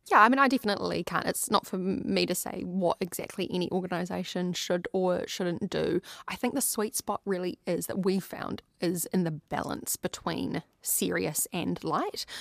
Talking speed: 185 wpm